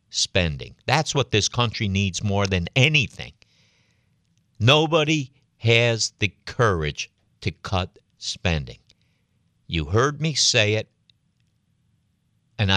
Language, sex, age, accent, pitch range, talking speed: English, male, 60-79, American, 85-130 Hz, 105 wpm